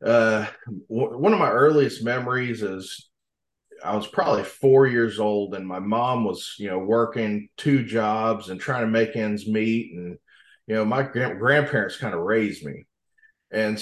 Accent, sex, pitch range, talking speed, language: American, male, 100-120 Hz, 165 wpm, English